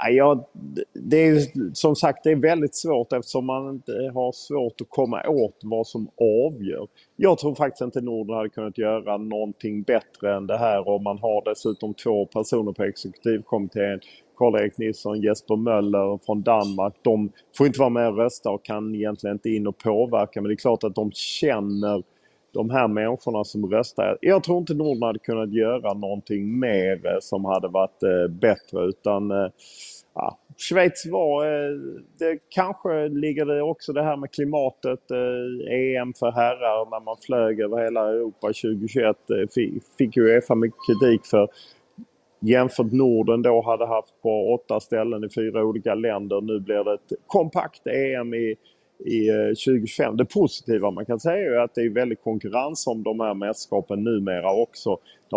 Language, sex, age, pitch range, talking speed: Swedish, male, 30-49, 105-130 Hz, 165 wpm